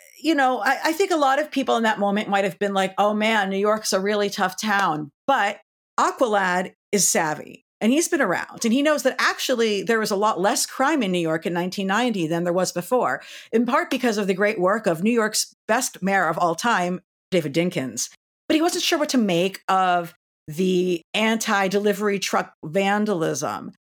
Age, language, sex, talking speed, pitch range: 50-69, English, female, 205 wpm, 185-235 Hz